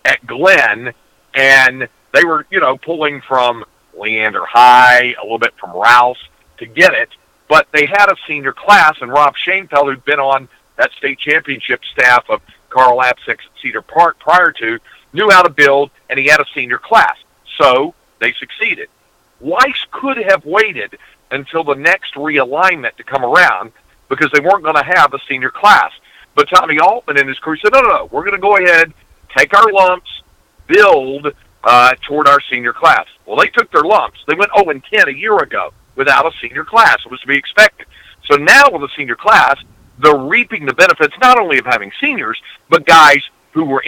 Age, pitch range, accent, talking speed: 50-69, 135-205 Hz, American, 190 wpm